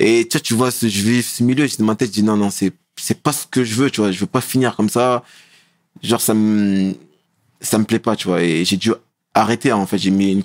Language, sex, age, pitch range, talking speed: French, male, 20-39, 100-120 Hz, 280 wpm